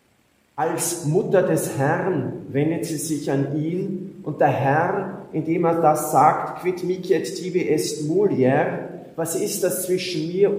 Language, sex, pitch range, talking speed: English, male, 155-185 Hz, 155 wpm